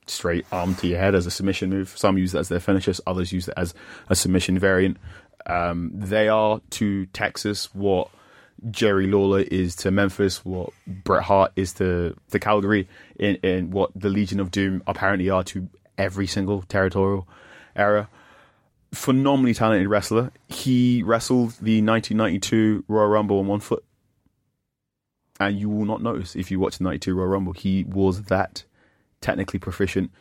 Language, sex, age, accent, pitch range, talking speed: English, male, 20-39, British, 95-105 Hz, 170 wpm